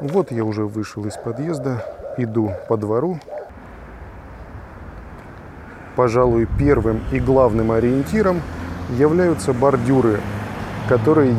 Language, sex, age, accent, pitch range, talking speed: Russian, male, 20-39, native, 110-130 Hz, 90 wpm